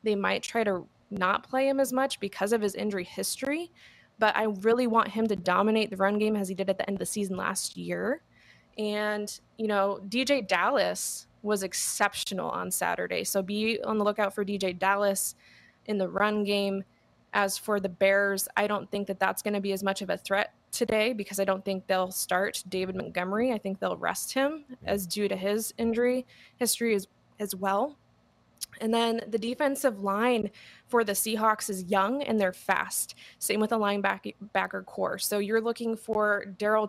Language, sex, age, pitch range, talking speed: English, female, 20-39, 195-230 Hz, 195 wpm